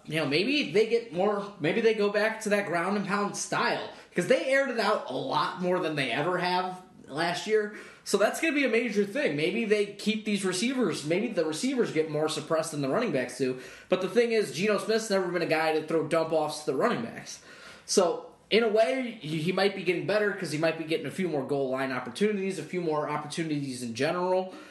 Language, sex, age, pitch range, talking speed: English, male, 20-39, 155-210 Hz, 240 wpm